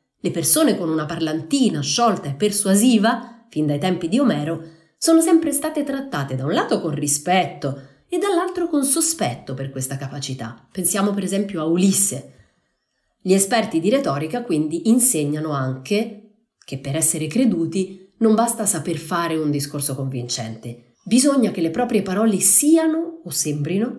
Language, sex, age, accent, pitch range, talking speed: Italian, female, 30-49, native, 150-235 Hz, 150 wpm